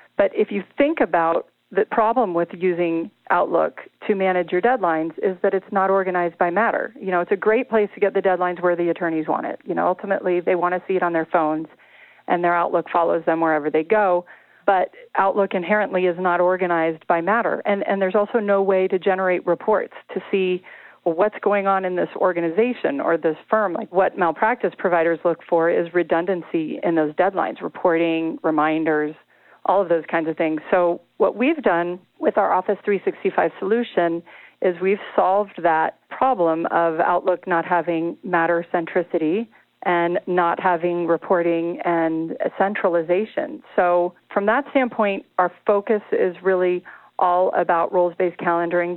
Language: English